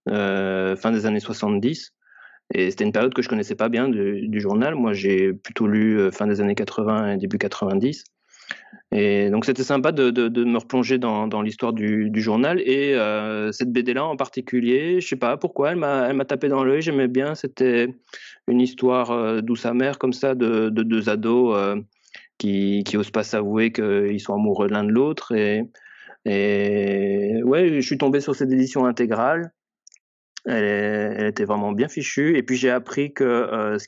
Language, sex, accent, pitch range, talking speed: French, male, French, 105-130 Hz, 200 wpm